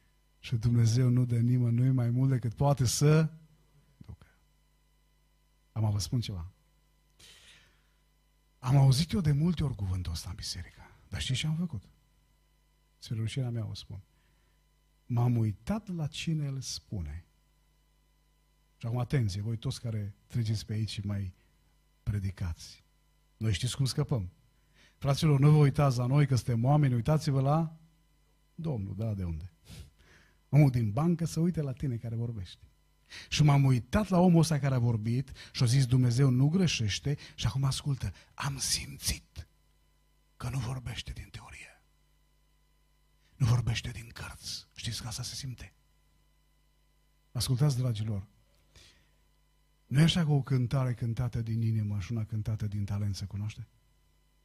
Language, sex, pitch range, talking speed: Romanian, male, 90-135 Hz, 145 wpm